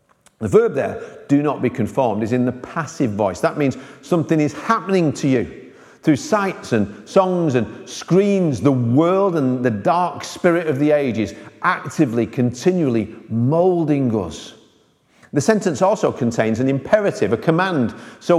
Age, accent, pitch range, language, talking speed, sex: 50-69, British, 110-160 Hz, English, 155 wpm, male